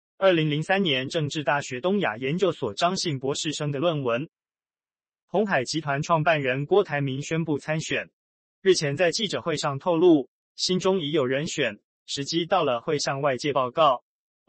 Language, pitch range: Chinese, 140-175 Hz